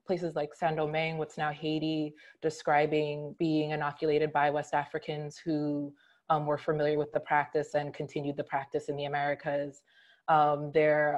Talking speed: 150 wpm